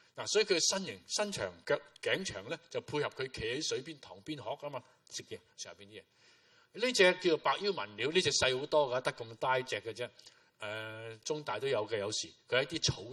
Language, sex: Chinese, male